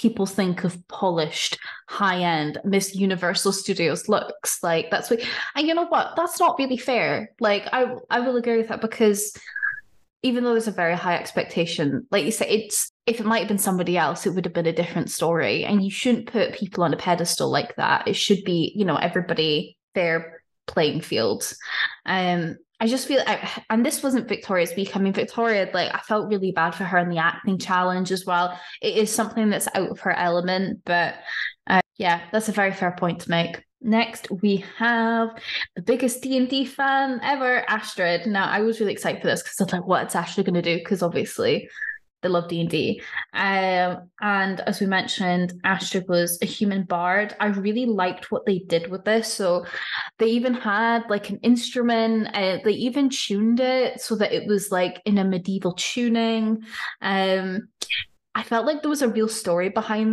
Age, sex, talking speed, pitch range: 10-29, female, 195 wpm, 180-230 Hz